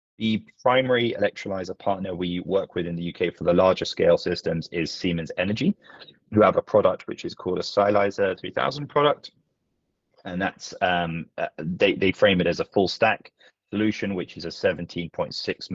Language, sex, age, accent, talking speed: English, male, 30-49, British, 175 wpm